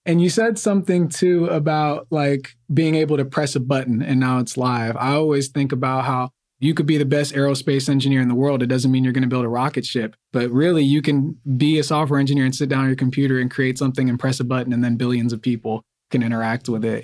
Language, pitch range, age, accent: English, 130-150 Hz, 20-39, American